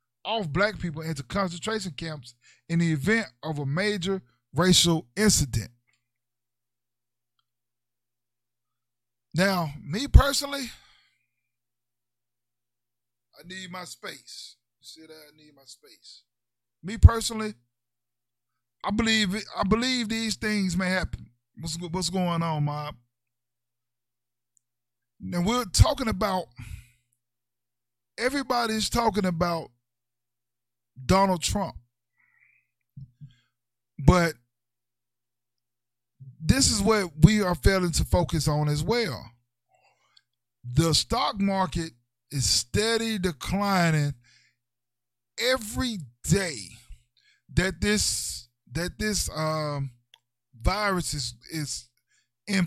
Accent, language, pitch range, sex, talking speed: American, English, 120-180 Hz, male, 90 wpm